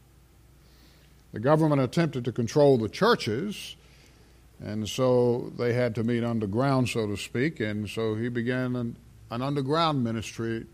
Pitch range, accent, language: 100-125 Hz, American, English